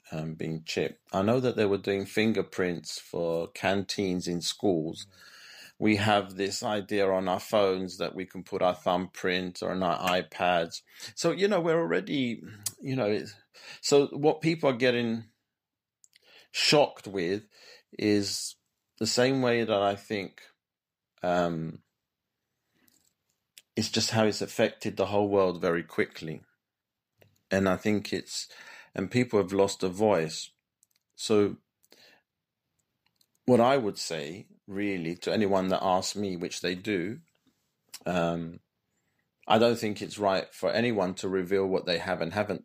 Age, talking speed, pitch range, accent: 40-59, 145 wpm, 90-110 Hz, British